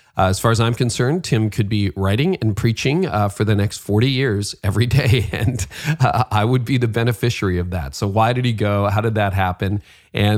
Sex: male